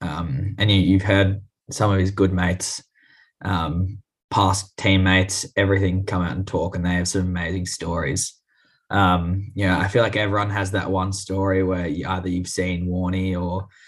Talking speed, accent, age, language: 185 wpm, Australian, 10-29, English